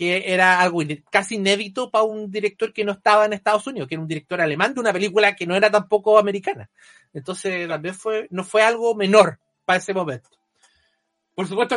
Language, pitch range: Spanish, 160-215 Hz